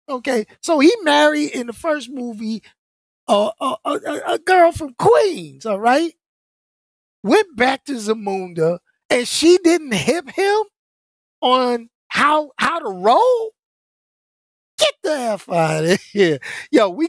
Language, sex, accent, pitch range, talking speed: English, male, American, 165-235 Hz, 135 wpm